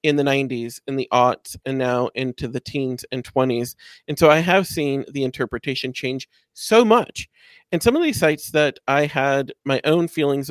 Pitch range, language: 125-155 Hz, English